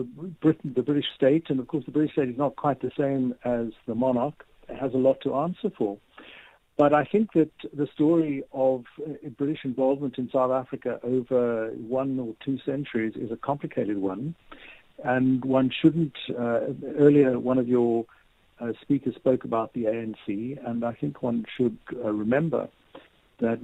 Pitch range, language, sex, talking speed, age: 115-135 Hz, English, male, 170 wpm, 50-69